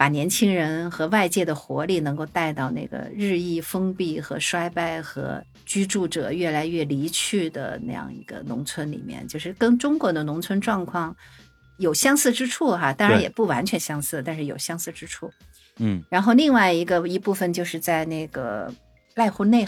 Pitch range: 155-215 Hz